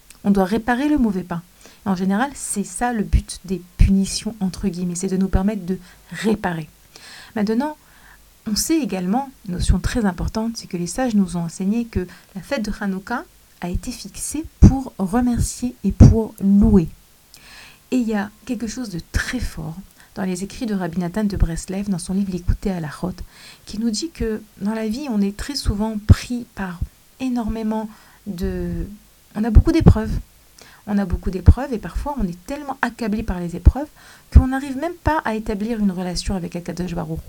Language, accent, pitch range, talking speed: French, French, 190-245 Hz, 190 wpm